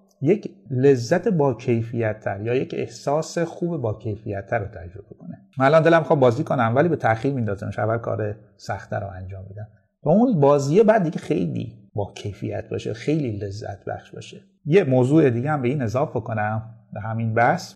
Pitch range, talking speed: 110-160 Hz, 175 wpm